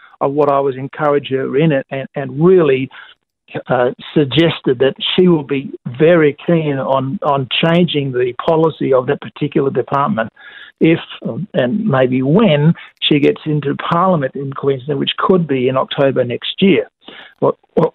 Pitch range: 145-200 Hz